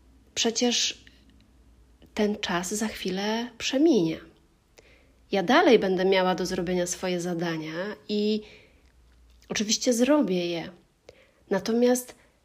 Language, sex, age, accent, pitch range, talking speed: Polish, female, 30-49, native, 180-220 Hz, 90 wpm